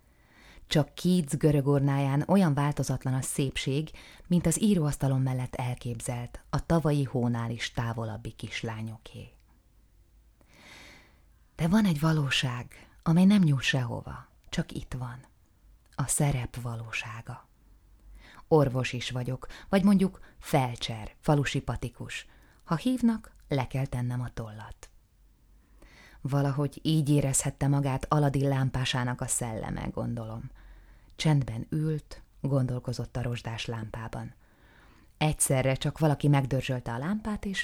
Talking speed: 110 wpm